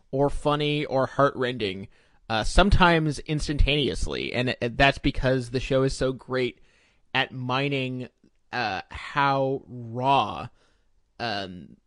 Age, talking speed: 30-49, 105 wpm